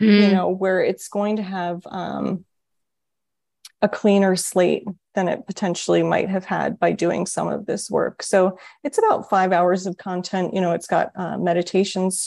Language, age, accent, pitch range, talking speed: English, 30-49, American, 175-195 Hz, 175 wpm